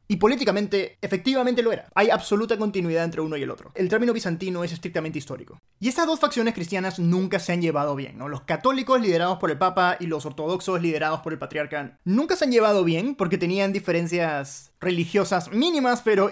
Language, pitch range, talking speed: Spanish, 155-205 Hz, 200 wpm